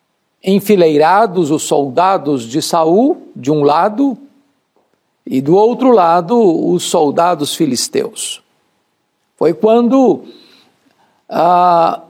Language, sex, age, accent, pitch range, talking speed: Portuguese, male, 60-79, Brazilian, 170-240 Hz, 90 wpm